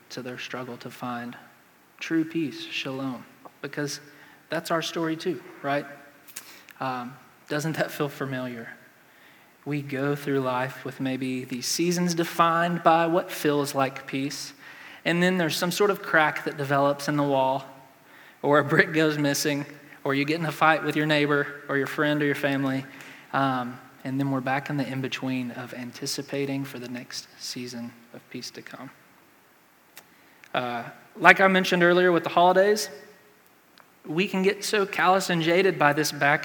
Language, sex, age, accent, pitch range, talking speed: English, male, 20-39, American, 135-160 Hz, 165 wpm